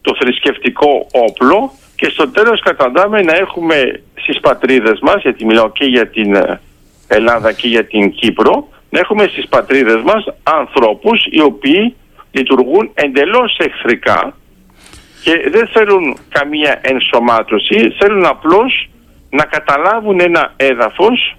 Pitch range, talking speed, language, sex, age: 135-220 Hz, 125 wpm, Greek, male, 50-69